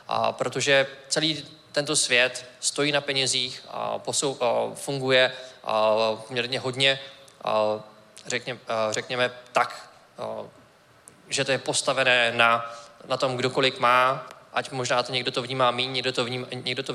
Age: 20-39